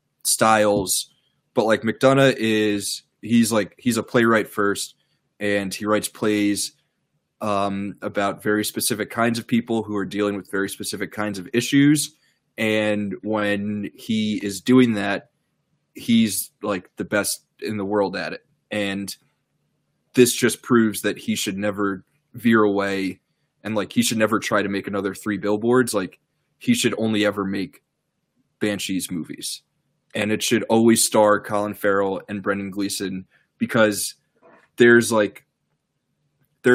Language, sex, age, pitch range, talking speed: English, male, 20-39, 100-110 Hz, 145 wpm